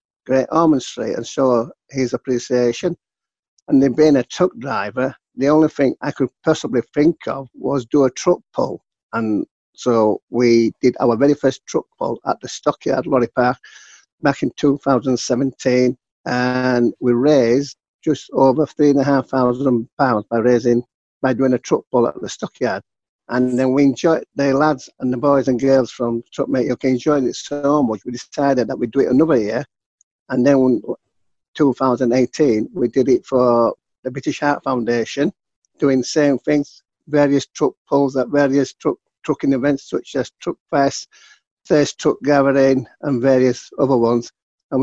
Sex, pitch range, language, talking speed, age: male, 125-140 Hz, English, 170 wpm, 50-69